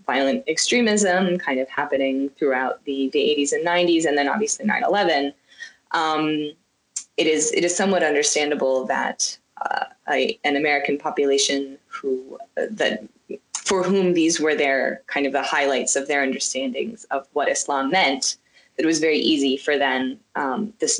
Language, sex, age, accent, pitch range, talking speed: English, female, 20-39, American, 140-195 Hz, 150 wpm